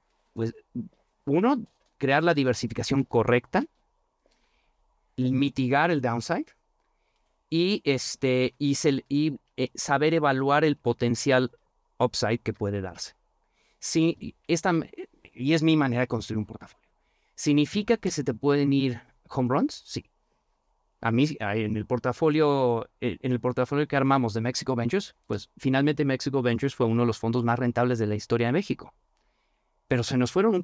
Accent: Mexican